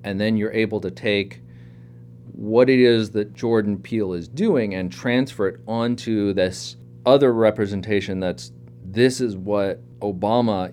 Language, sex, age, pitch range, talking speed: English, male, 30-49, 80-110 Hz, 145 wpm